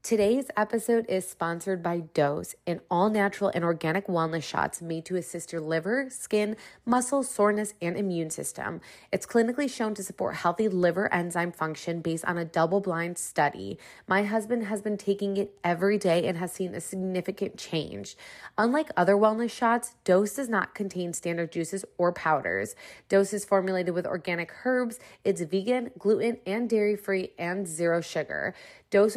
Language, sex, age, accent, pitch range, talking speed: English, female, 20-39, American, 175-220 Hz, 165 wpm